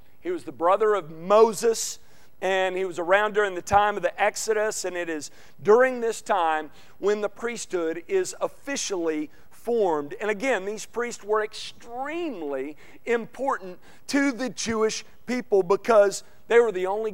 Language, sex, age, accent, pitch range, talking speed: English, male, 40-59, American, 175-225 Hz, 155 wpm